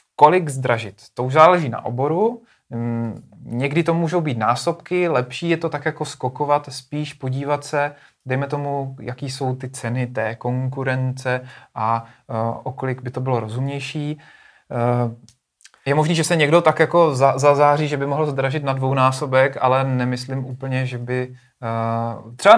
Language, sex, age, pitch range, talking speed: Czech, male, 30-49, 125-145 Hz, 155 wpm